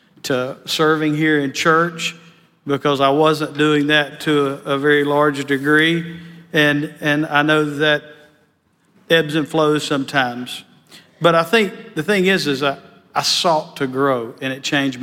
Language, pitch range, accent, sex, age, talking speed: English, 140-160 Hz, American, male, 50-69, 160 wpm